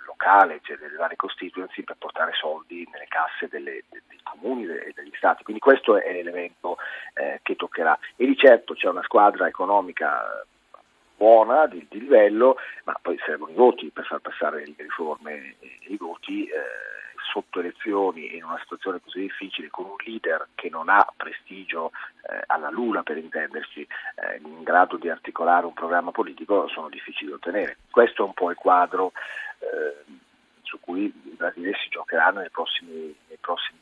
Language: Italian